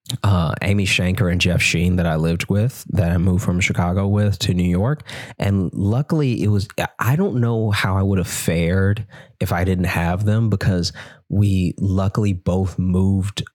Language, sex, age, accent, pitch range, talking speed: English, male, 20-39, American, 90-115 Hz, 180 wpm